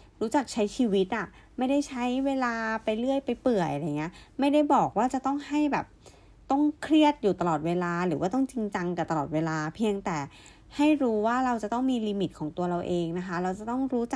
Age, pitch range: 20-39, 175-245 Hz